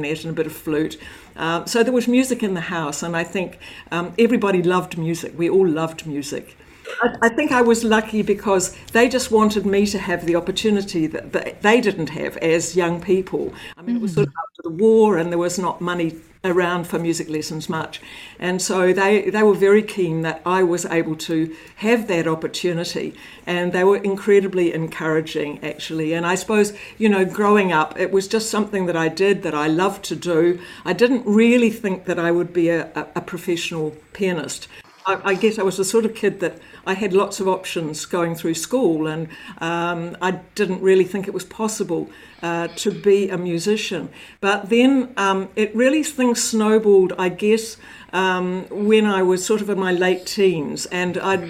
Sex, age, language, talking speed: female, 60-79, English, 195 wpm